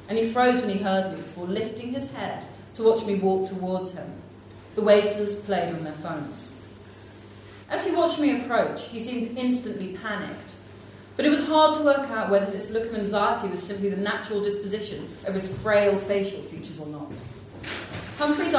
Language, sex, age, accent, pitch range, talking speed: English, female, 30-49, British, 165-230 Hz, 185 wpm